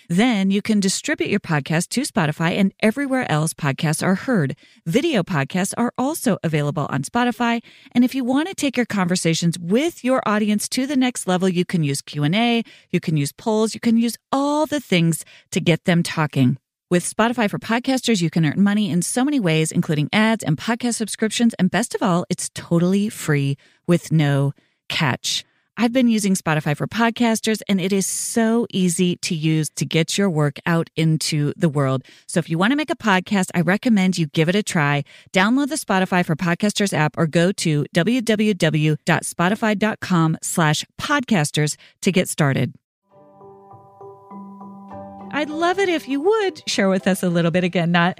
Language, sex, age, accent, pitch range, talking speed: English, female, 30-49, American, 165-220 Hz, 180 wpm